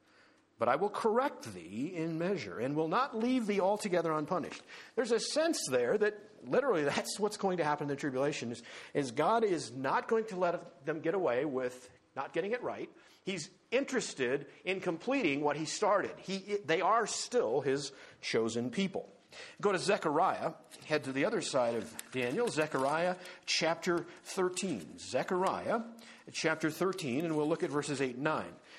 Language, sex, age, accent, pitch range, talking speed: English, male, 50-69, American, 140-205 Hz, 170 wpm